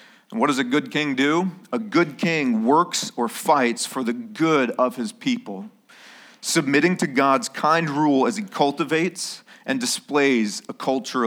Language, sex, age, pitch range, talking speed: English, male, 40-59, 145-215 Hz, 165 wpm